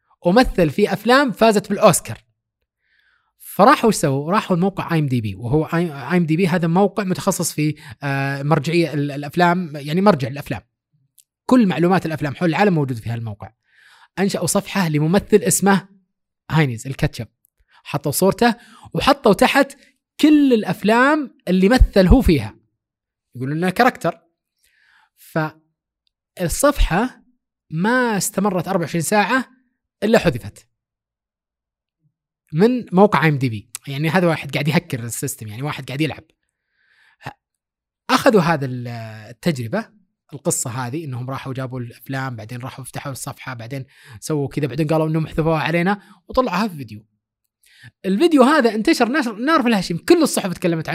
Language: Arabic